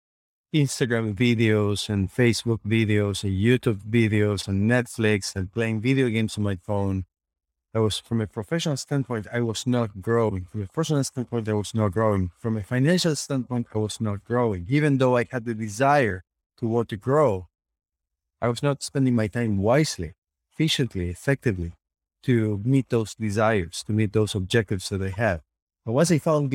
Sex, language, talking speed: male, English, 175 wpm